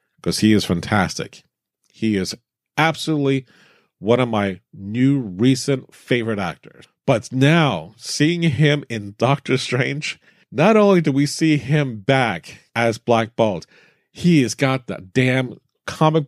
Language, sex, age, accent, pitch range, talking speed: English, male, 40-59, American, 100-140 Hz, 135 wpm